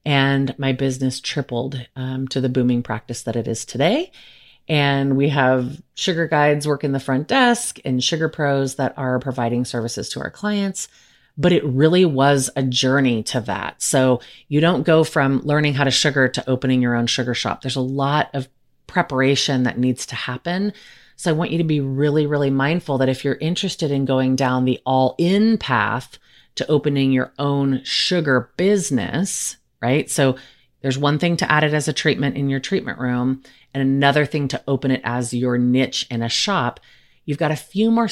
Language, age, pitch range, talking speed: English, 30-49, 130-160 Hz, 195 wpm